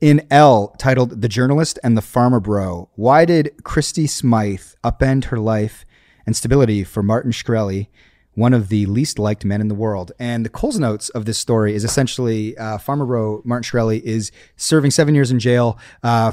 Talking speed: 185 wpm